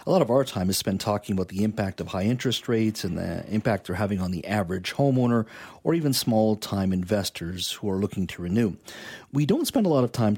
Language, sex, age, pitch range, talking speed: English, male, 50-69, 95-120 Hz, 235 wpm